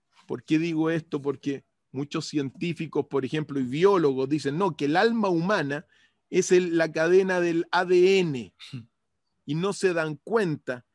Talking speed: 155 wpm